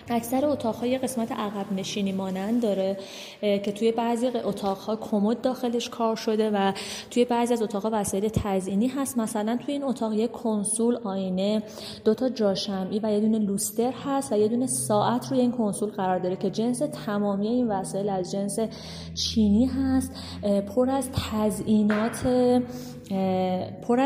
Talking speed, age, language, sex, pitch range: 140 wpm, 20-39, Persian, female, 195-235 Hz